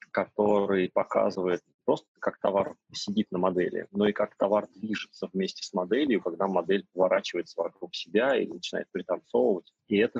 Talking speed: 155 wpm